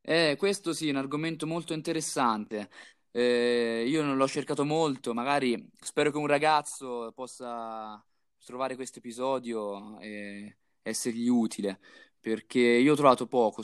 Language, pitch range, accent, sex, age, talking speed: Italian, 110-140 Hz, native, male, 20-39, 135 wpm